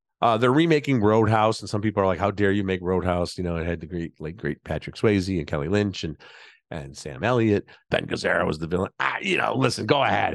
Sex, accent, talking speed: male, American, 245 wpm